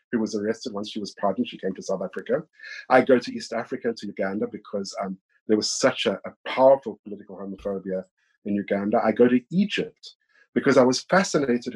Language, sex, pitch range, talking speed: English, male, 110-150 Hz, 200 wpm